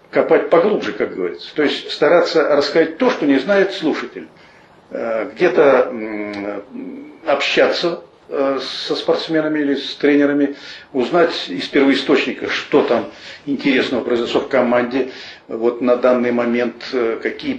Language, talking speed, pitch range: Russian, 115 wpm, 120-175 Hz